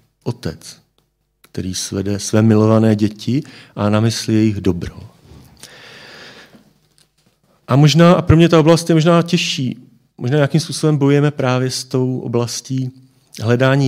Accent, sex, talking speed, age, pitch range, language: native, male, 130 wpm, 40-59, 110-145 Hz, Czech